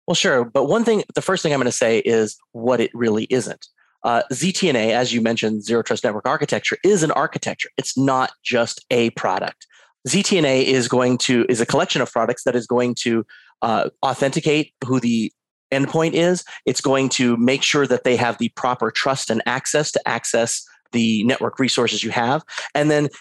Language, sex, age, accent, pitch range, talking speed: English, male, 30-49, American, 115-140 Hz, 195 wpm